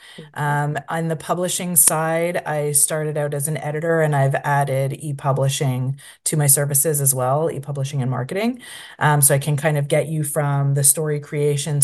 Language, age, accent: English, 30-49, American